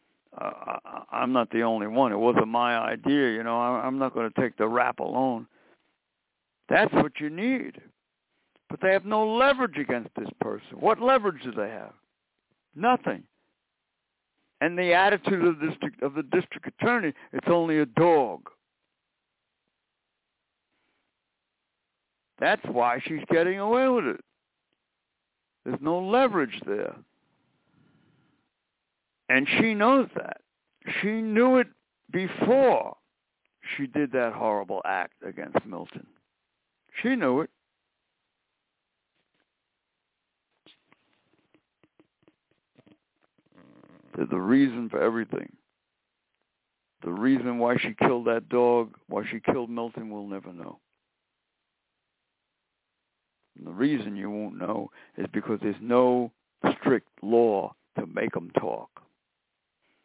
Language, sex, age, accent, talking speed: English, male, 60-79, American, 115 wpm